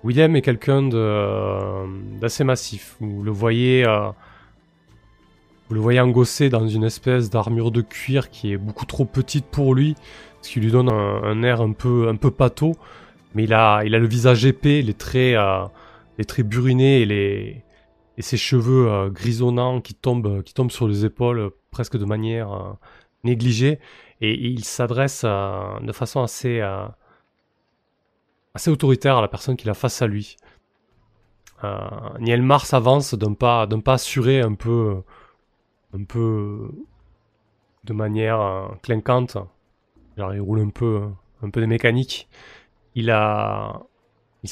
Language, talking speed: French, 160 wpm